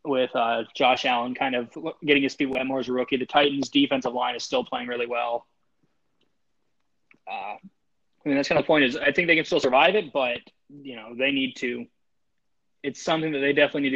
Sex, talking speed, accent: male, 220 wpm, American